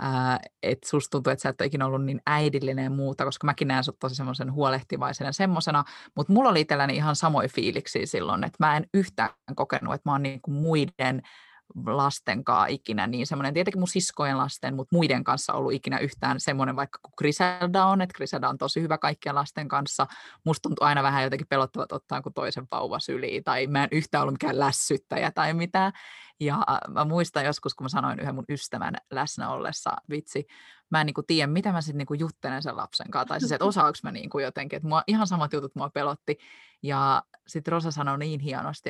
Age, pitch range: 20-39, 135-160 Hz